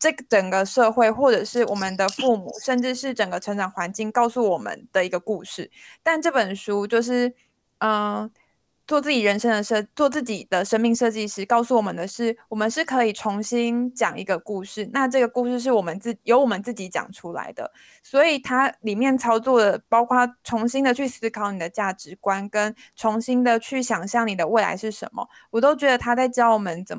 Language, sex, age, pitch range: Chinese, female, 20-39, 205-250 Hz